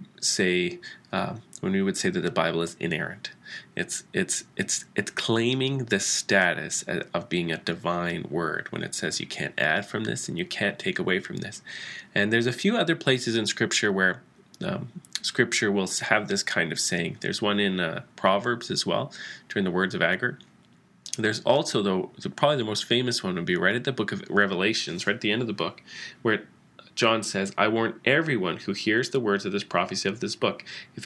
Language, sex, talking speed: English, male, 210 wpm